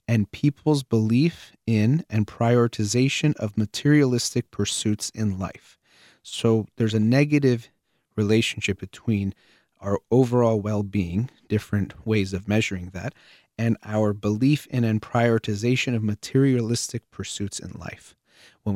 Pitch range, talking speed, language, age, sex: 100-125 Hz, 120 wpm, English, 30-49, male